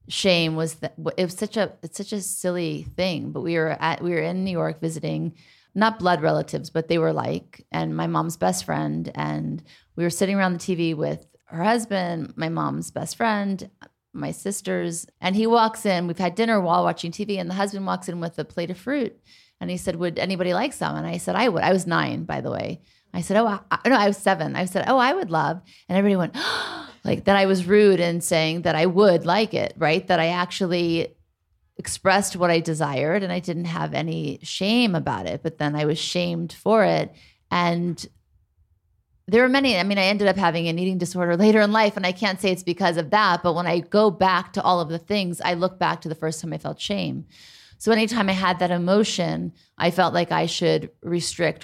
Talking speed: 230 wpm